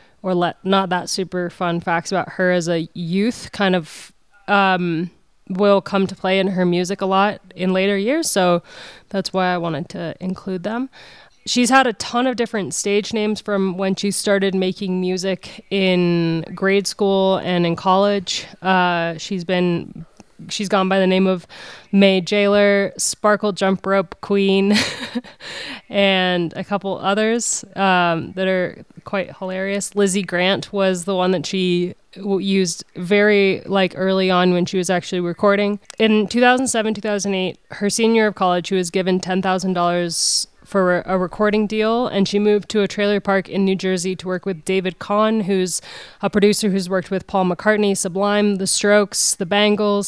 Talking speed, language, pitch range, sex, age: 170 wpm, English, 185-205 Hz, female, 20-39